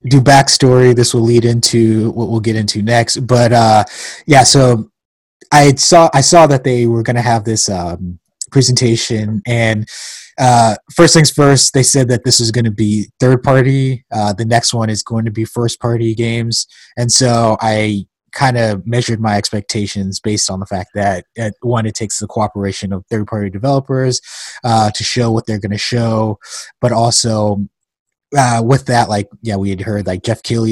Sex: male